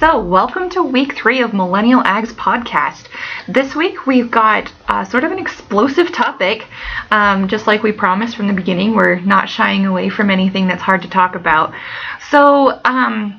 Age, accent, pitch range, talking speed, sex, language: 20-39, American, 185-235 Hz, 180 wpm, female, English